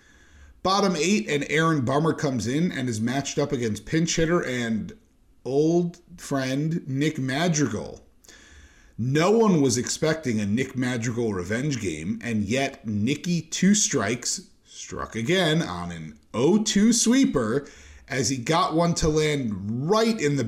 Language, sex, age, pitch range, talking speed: English, male, 40-59, 115-170 Hz, 140 wpm